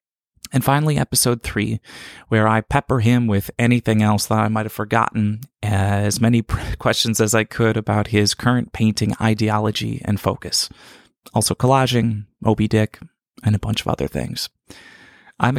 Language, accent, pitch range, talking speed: English, American, 105-130 Hz, 155 wpm